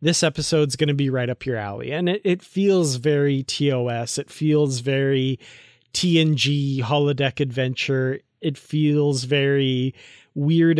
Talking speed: 140 wpm